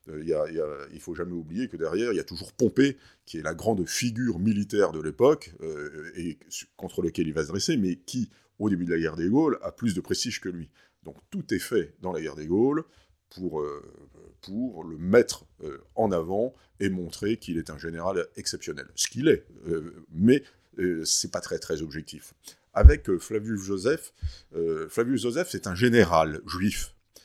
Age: 50-69